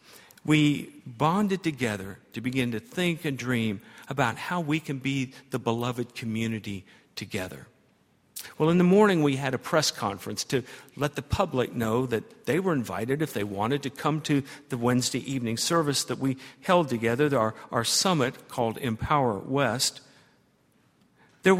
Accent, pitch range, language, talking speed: American, 125-165 Hz, English, 160 wpm